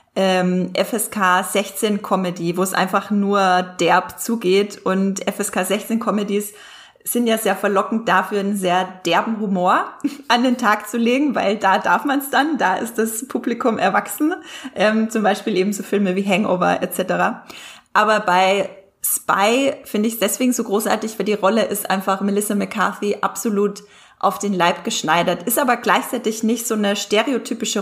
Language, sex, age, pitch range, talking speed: German, female, 20-39, 190-225 Hz, 155 wpm